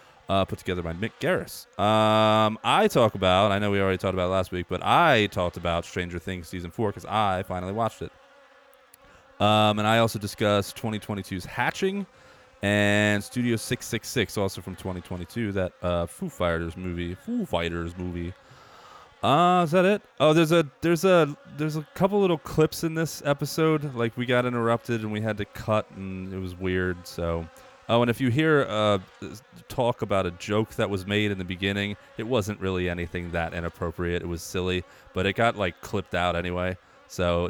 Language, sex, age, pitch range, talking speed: English, male, 30-49, 90-140 Hz, 185 wpm